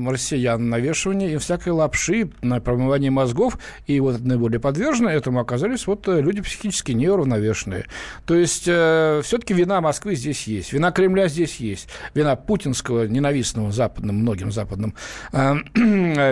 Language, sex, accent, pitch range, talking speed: Russian, male, native, 120-180 Hz, 140 wpm